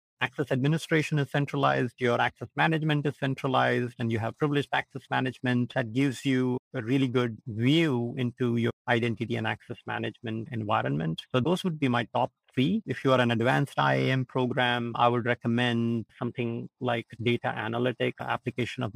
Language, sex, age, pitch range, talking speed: English, male, 50-69, 115-130 Hz, 165 wpm